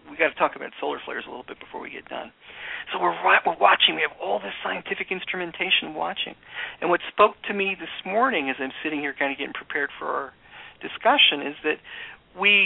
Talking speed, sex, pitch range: 220 wpm, male, 150-220 Hz